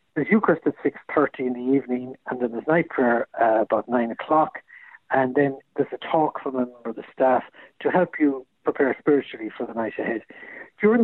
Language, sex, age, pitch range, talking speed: English, male, 60-79, 125-160 Hz, 205 wpm